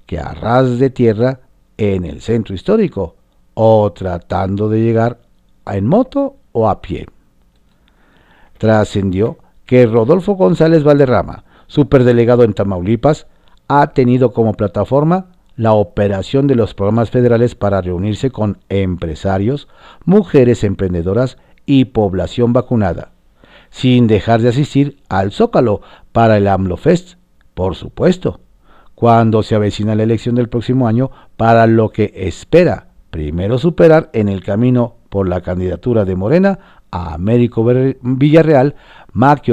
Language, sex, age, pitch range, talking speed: Spanish, male, 50-69, 95-135 Hz, 125 wpm